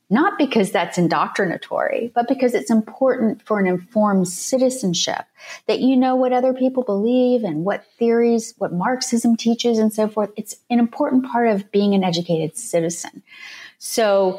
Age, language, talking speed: 30-49, English, 160 wpm